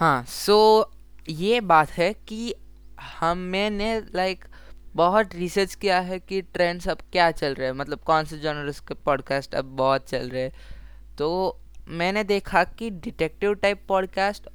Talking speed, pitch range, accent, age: 160 wpm, 145-190 Hz, native, 20-39